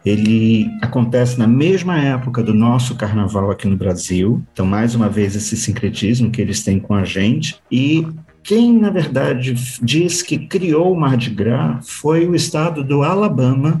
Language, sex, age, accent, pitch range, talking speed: Portuguese, male, 50-69, Brazilian, 105-130 Hz, 170 wpm